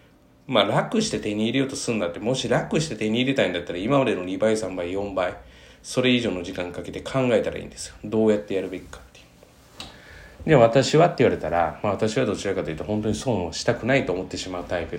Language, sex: Japanese, male